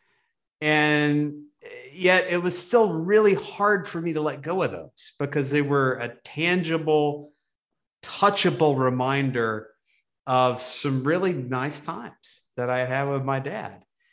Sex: male